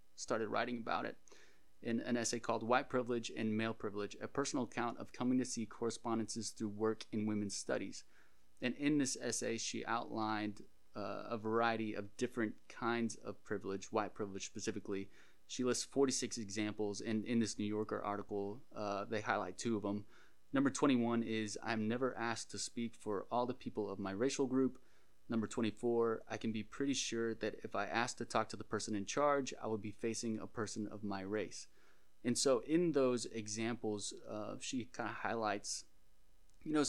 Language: English